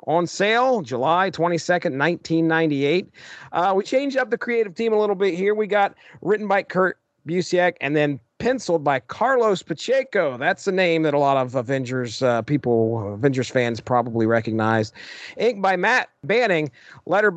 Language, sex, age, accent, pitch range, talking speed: English, male, 40-59, American, 140-200 Hz, 160 wpm